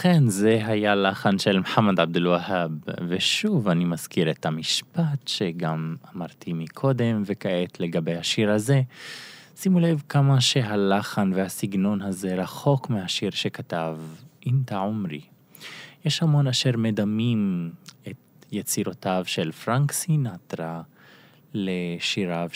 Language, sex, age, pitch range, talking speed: Hebrew, male, 20-39, 95-140 Hz, 110 wpm